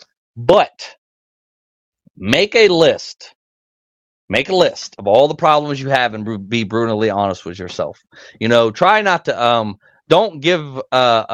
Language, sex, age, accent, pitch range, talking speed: English, male, 30-49, American, 110-170 Hz, 150 wpm